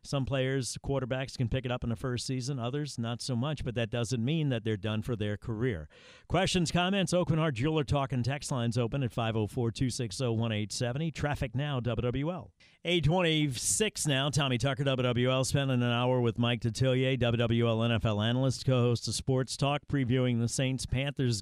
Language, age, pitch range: English, 50-69, 115-135 Hz